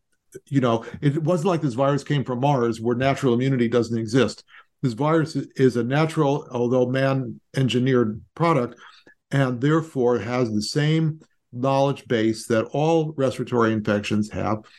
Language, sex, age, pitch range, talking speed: English, male, 50-69, 115-145 Hz, 140 wpm